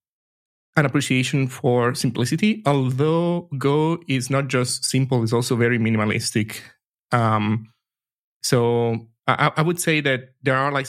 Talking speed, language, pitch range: 130 wpm, English, 120-145 Hz